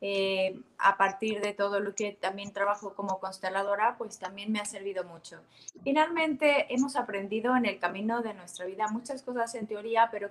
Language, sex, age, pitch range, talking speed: English, female, 20-39, 195-240 Hz, 180 wpm